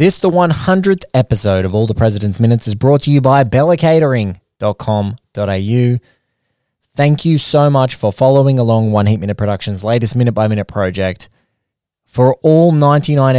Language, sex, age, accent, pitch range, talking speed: English, male, 20-39, Australian, 105-130 Hz, 150 wpm